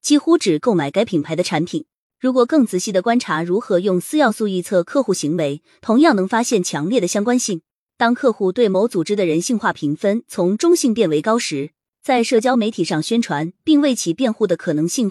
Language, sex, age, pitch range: Chinese, female, 20-39, 170-240 Hz